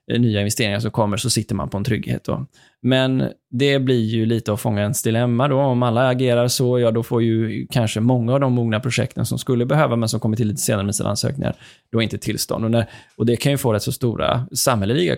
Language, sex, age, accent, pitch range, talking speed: Swedish, male, 20-39, native, 110-125 Hz, 225 wpm